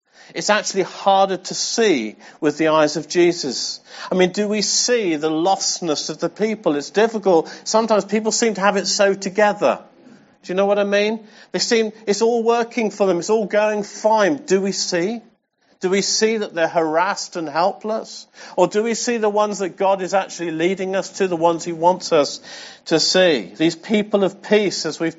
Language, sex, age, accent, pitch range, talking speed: English, male, 50-69, British, 165-210 Hz, 200 wpm